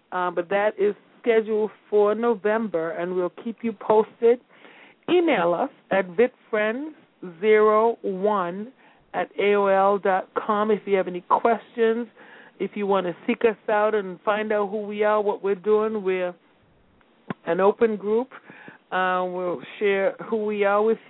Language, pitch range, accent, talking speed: English, 190-225 Hz, American, 140 wpm